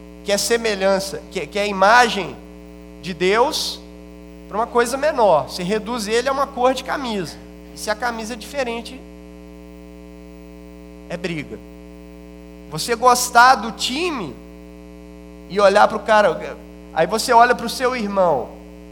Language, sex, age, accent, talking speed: Portuguese, male, 20-39, Brazilian, 150 wpm